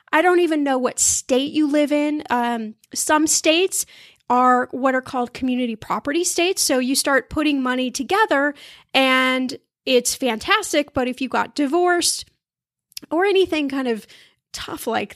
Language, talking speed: English, 155 wpm